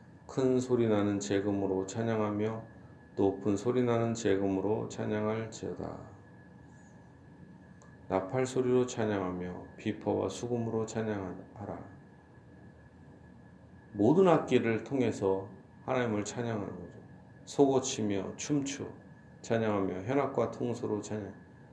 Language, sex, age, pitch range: Korean, male, 40-59, 100-120 Hz